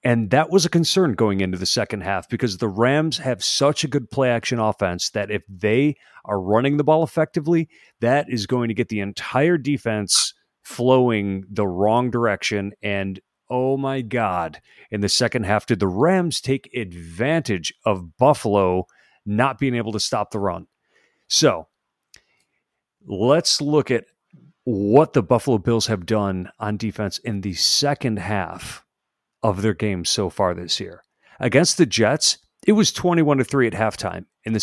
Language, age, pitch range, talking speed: English, 40-59, 110-150 Hz, 170 wpm